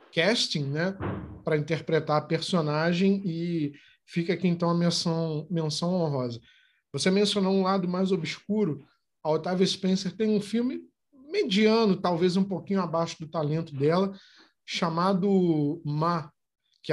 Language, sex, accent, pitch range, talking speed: Portuguese, male, Brazilian, 155-195 Hz, 130 wpm